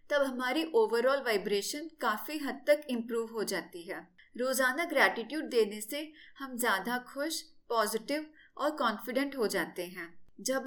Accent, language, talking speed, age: native, Hindi, 135 wpm, 30-49